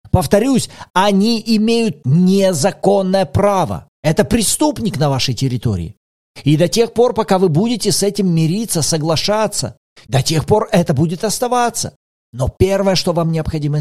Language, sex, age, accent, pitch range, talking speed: Russian, male, 40-59, native, 130-185 Hz, 140 wpm